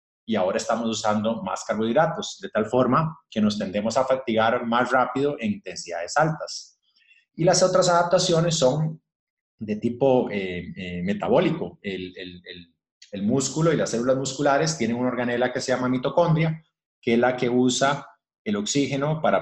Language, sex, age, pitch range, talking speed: Spanish, male, 30-49, 115-155 Hz, 165 wpm